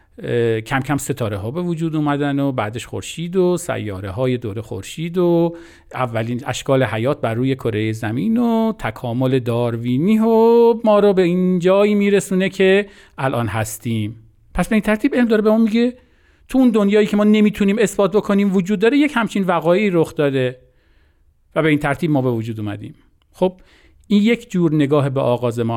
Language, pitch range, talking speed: Persian, 120-185 Hz, 175 wpm